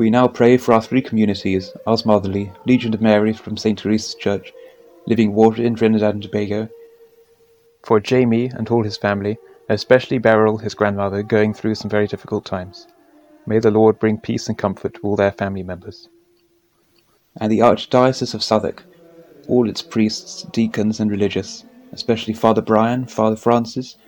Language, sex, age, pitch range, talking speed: English, male, 30-49, 105-135 Hz, 165 wpm